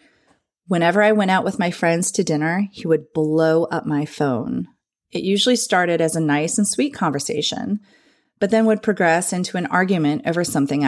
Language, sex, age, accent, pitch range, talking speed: English, female, 30-49, American, 150-185 Hz, 180 wpm